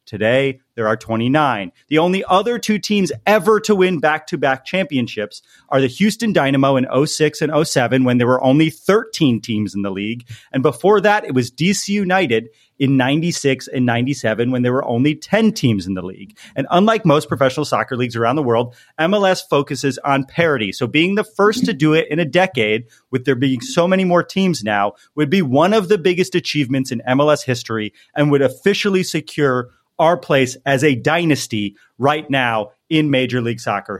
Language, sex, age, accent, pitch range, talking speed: English, male, 30-49, American, 130-185 Hz, 190 wpm